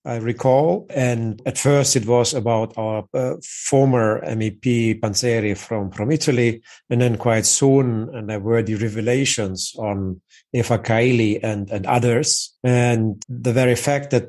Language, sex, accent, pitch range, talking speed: English, male, German, 110-130 Hz, 150 wpm